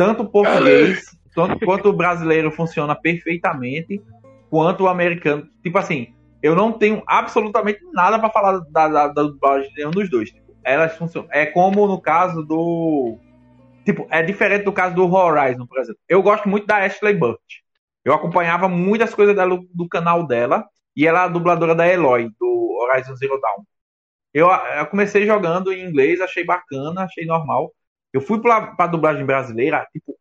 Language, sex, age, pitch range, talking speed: Portuguese, male, 20-39, 155-205 Hz, 170 wpm